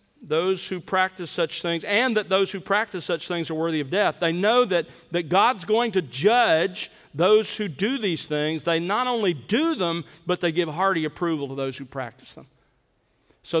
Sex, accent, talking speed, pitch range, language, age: male, American, 200 wpm, 150-190 Hz, English, 50-69